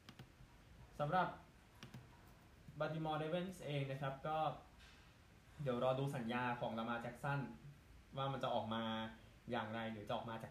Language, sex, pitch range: Thai, male, 110-130 Hz